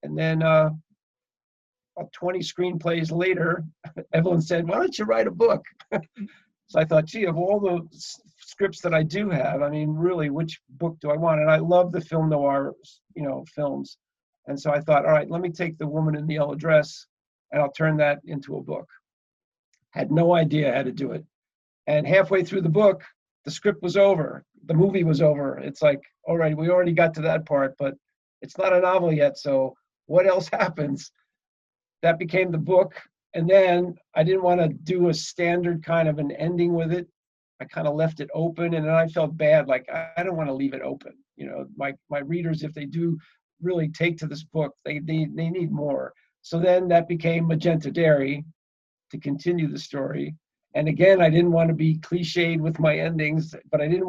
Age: 50-69